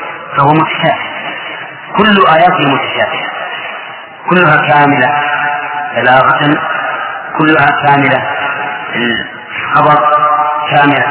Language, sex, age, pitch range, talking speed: English, male, 40-59, 140-170 Hz, 65 wpm